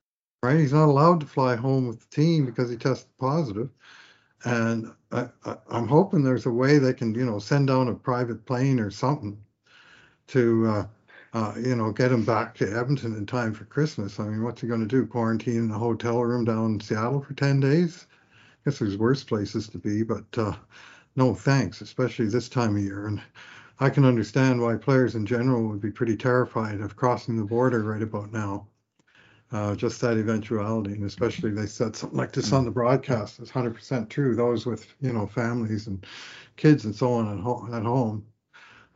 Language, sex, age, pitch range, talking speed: English, male, 60-79, 110-130 Hz, 195 wpm